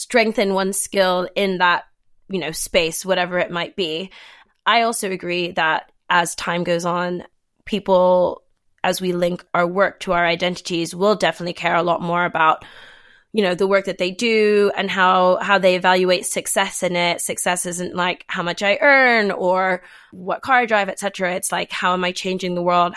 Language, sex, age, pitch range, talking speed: English, female, 20-39, 175-195 Hz, 190 wpm